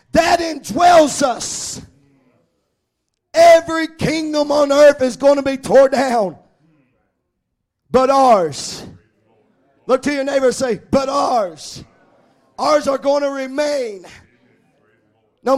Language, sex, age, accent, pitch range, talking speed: English, male, 40-59, American, 255-295 Hz, 110 wpm